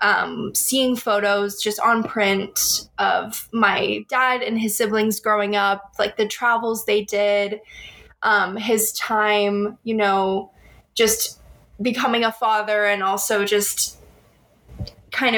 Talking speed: 125 wpm